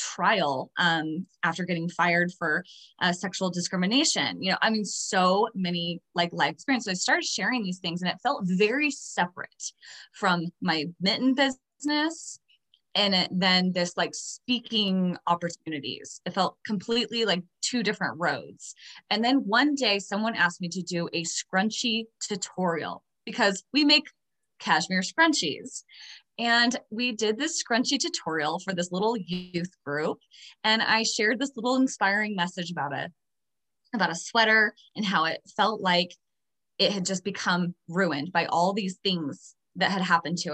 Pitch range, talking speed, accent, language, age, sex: 175-215 Hz, 155 wpm, American, English, 20-39, female